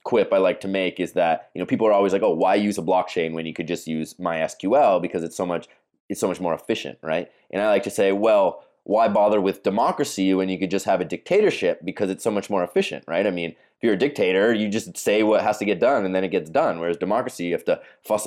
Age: 20-39